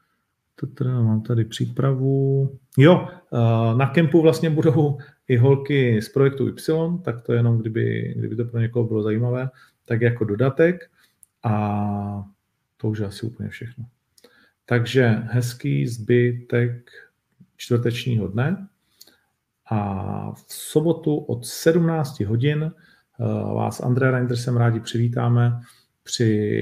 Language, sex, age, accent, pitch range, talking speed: Czech, male, 40-59, native, 115-135 Hz, 115 wpm